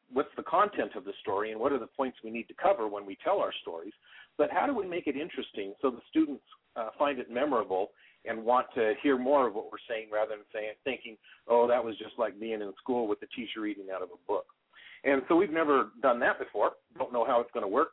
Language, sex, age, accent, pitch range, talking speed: English, male, 50-69, American, 110-145 Hz, 260 wpm